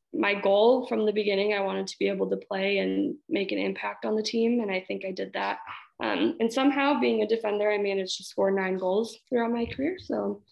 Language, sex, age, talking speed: English, female, 20-39, 235 wpm